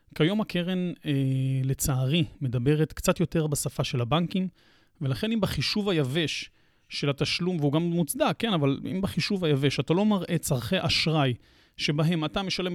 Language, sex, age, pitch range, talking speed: Hebrew, male, 30-49, 135-165 Hz, 150 wpm